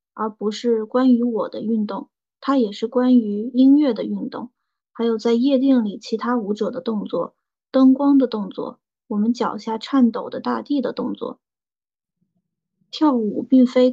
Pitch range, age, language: 215-255 Hz, 20-39, Chinese